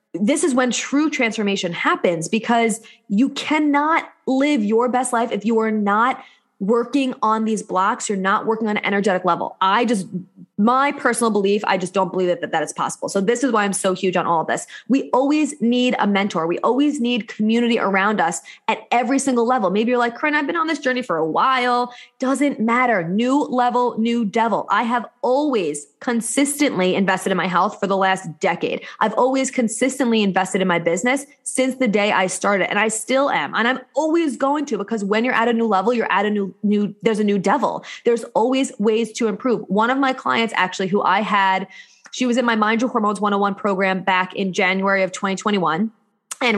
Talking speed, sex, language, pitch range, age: 210 wpm, female, English, 195-250 Hz, 20-39